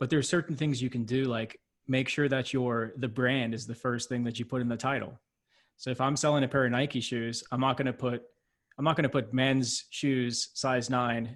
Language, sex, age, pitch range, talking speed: English, male, 20-39, 120-135 Hz, 255 wpm